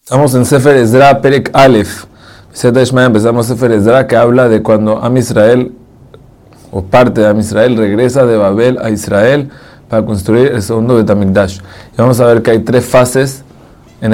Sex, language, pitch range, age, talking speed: male, Spanish, 105-120 Hz, 30-49, 180 wpm